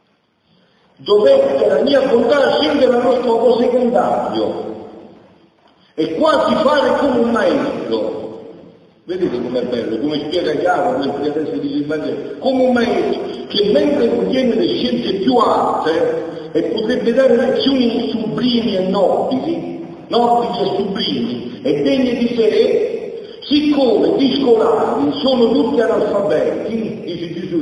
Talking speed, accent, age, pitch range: 120 wpm, native, 50-69, 215-285 Hz